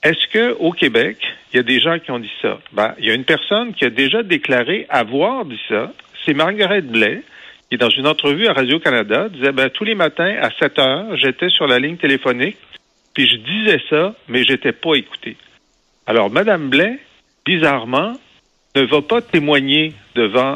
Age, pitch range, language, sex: 50-69, 120-170 Hz, French, male